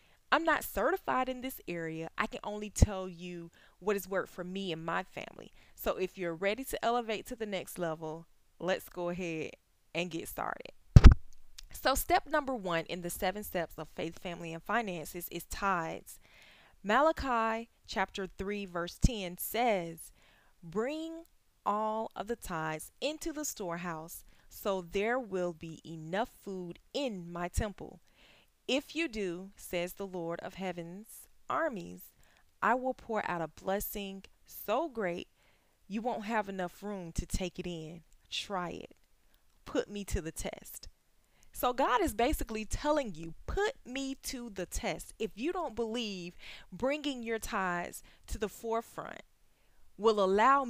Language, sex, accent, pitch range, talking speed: English, female, American, 175-235 Hz, 155 wpm